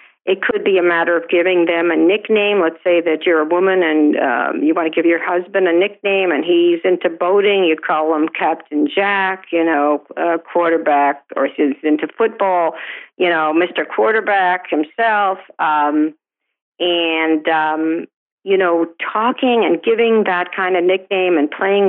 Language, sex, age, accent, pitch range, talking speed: English, female, 50-69, American, 170-205 Hz, 165 wpm